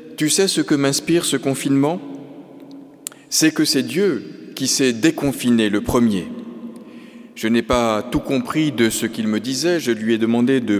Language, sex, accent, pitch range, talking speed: French, male, French, 125-175 Hz, 170 wpm